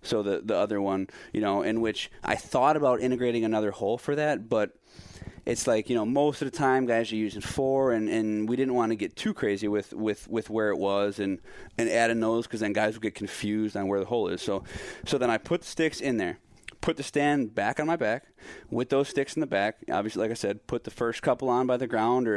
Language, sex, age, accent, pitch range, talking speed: English, male, 20-39, American, 105-125 Hz, 250 wpm